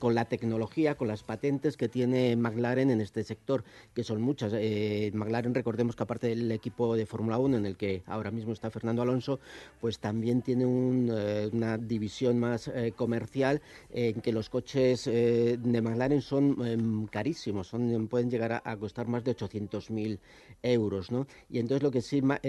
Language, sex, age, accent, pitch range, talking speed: Spanish, male, 50-69, Spanish, 110-130 Hz, 185 wpm